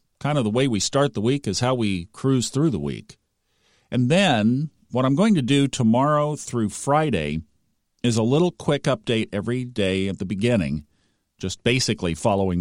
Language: English